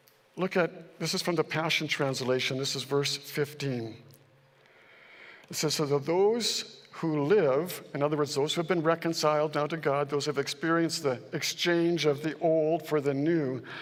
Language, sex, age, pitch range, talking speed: English, male, 60-79, 135-165 Hz, 180 wpm